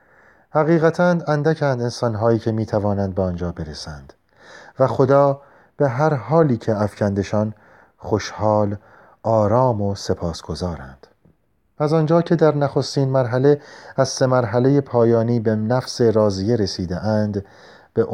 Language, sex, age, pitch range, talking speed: Persian, male, 40-59, 100-145 Hz, 115 wpm